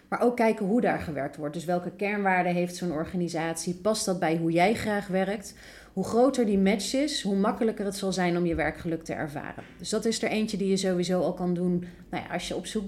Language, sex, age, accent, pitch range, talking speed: Dutch, female, 30-49, Dutch, 175-210 Hz, 240 wpm